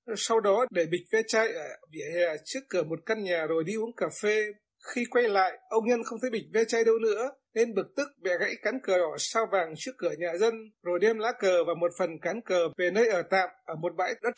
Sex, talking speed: male, 260 wpm